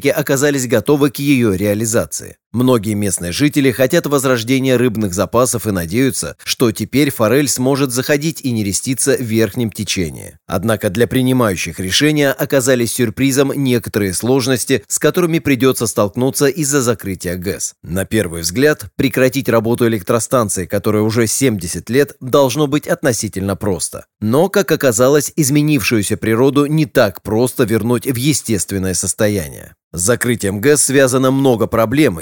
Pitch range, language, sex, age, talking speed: 105-135 Hz, Russian, male, 30-49, 135 wpm